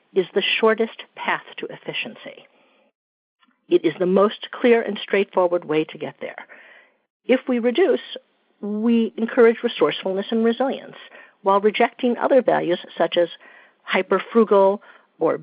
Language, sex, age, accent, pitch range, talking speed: English, female, 50-69, American, 195-255 Hz, 130 wpm